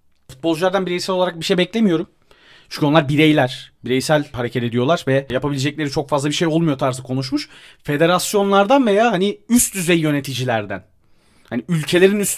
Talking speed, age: 145 wpm, 30-49